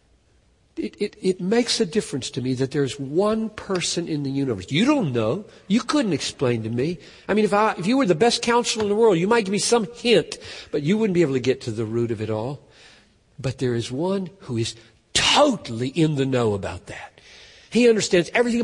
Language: English